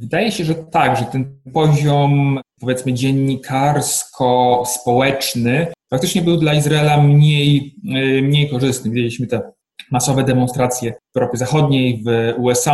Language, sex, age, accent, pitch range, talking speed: Polish, male, 20-39, native, 120-140 Hz, 120 wpm